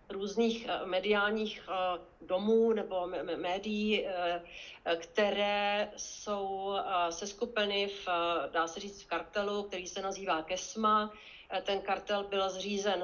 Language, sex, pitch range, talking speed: Czech, female, 185-215 Hz, 100 wpm